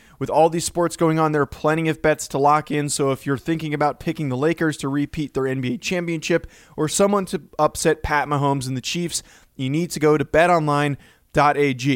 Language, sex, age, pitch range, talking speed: English, male, 20-39, 135-165 Hz, 210 wpm